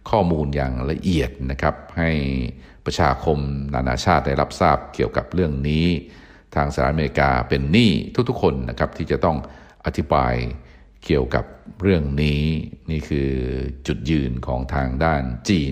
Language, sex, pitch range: Thai, male, 65-85 Hz